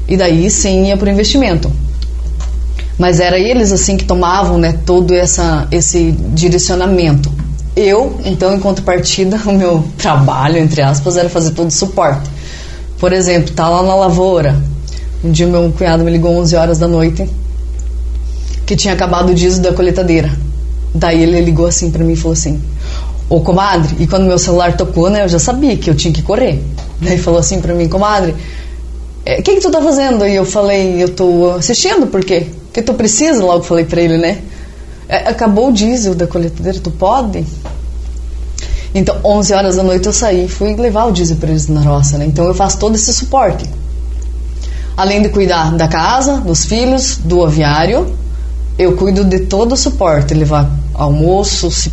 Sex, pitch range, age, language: female, 145-190 Hz, 20-39, Portuguese